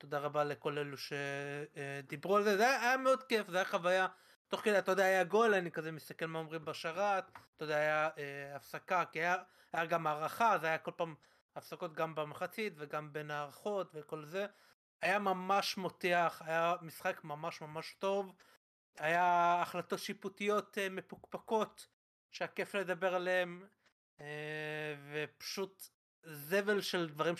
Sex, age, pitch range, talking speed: male, 30-49, 150-190 Hz, 155 wpm